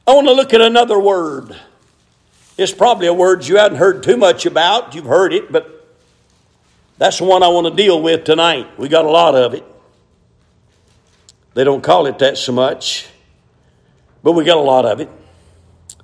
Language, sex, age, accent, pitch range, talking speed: English, male, 50-69, American, 165-225 Hz, 185 wpm